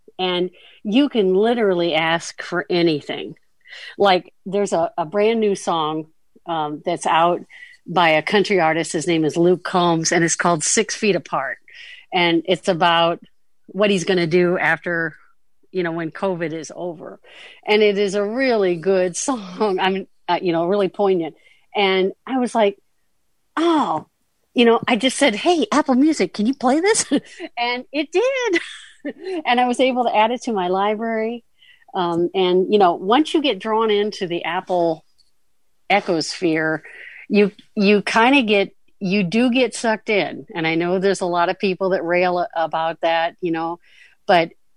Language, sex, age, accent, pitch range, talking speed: English, female, 50-69, American, 175-230 Hz, 170 wpm